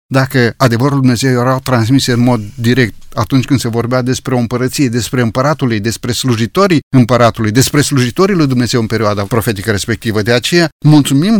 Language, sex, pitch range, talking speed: Romanian, male, 115-135 Hz, 165 wpm